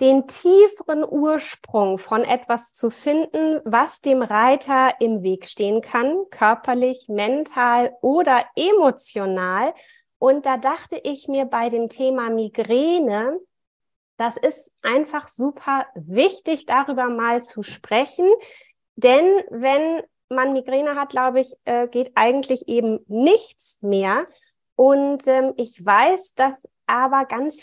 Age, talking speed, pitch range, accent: 20-39, 115 wpm, 235-285 Hz, German